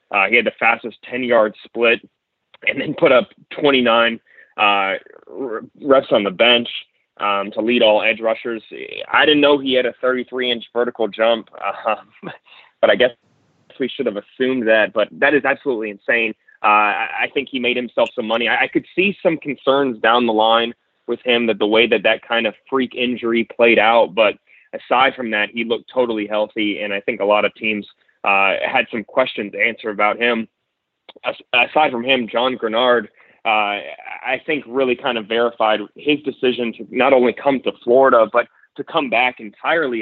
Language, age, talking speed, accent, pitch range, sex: English, 20-39, 185 wpm, American, 110-125 Hz, male